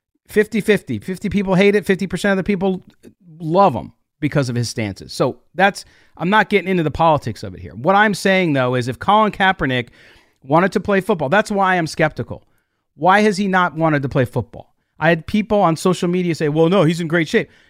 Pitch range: 130-185 Hz